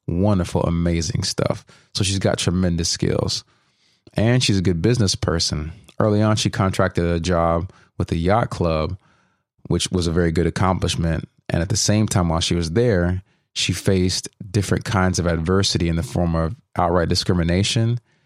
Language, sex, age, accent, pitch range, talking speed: English, male, 30-49, American, 85-110 Hz, 170 wpm